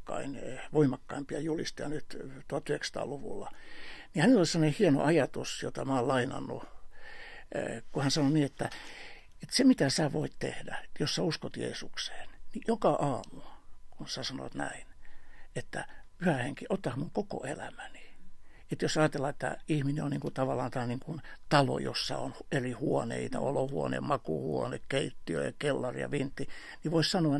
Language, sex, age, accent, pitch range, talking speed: Finnish, male, 60-79, native, 135-195 Hz, 150 wpm